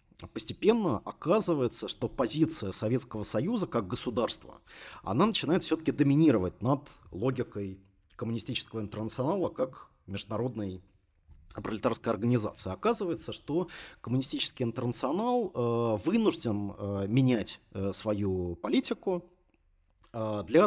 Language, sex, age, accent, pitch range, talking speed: Russian, male, 30-49, native, 100-125 Hz, 85 wpm